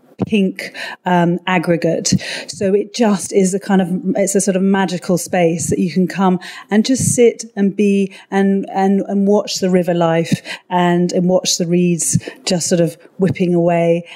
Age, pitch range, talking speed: 30-49, 180-215 Hz, 180 wpm